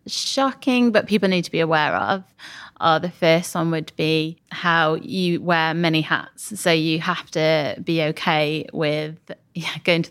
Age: 20-39